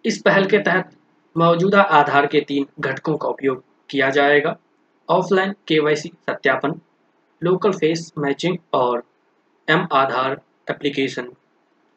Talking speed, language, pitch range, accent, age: 105 wpm, Hindi, 145-185 Hz, native, 20-39